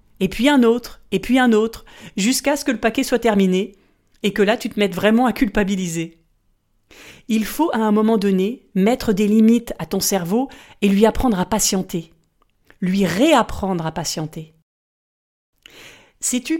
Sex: female